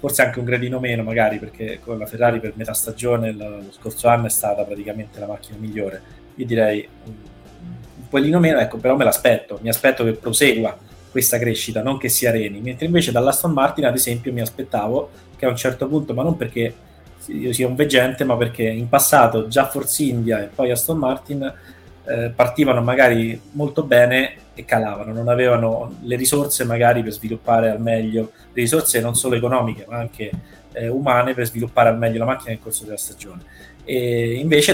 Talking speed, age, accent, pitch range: 190 wpm, 20-39, native, 110-130 Hz